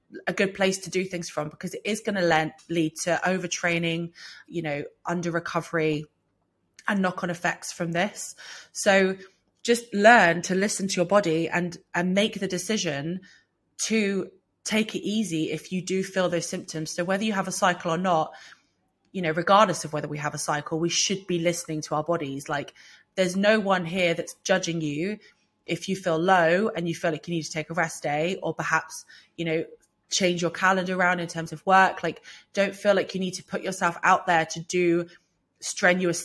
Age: 20-39